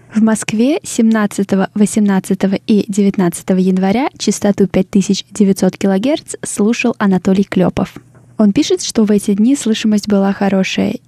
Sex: female